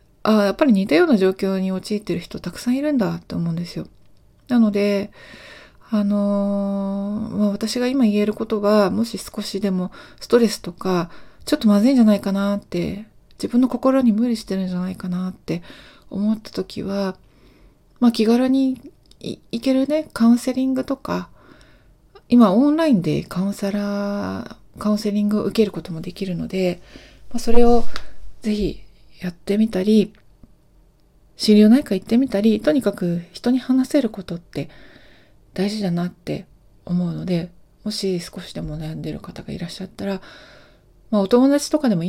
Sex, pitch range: female, 185-230 Hz